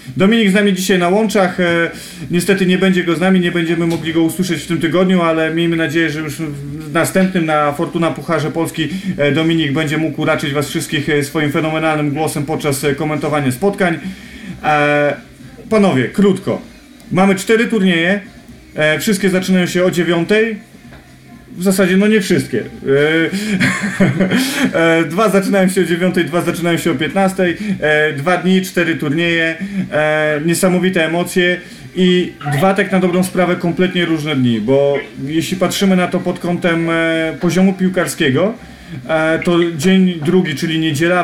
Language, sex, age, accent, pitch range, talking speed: Polish, male, 30-49, native, 155-185 Hz, 145 wpm